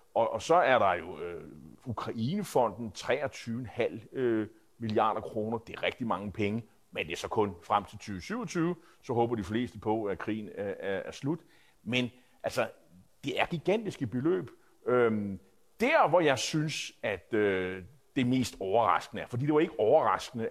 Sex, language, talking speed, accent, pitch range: male, Danish, 150 wpm, native, 110-150 Hz